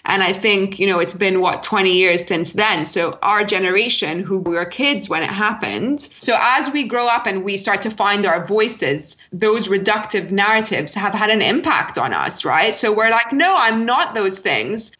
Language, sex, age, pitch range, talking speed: English, female, 20-39, 185-225 Hz, 205 wpm